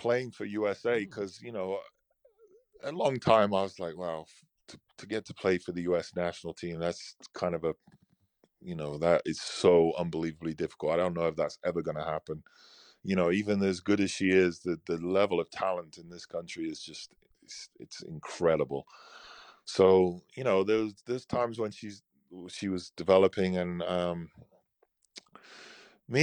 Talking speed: 180 wpm